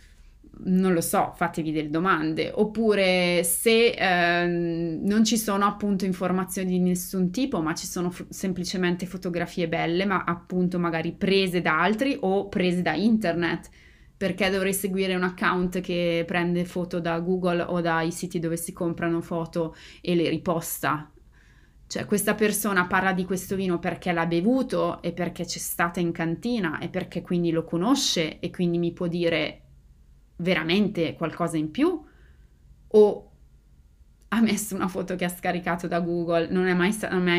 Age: 20-39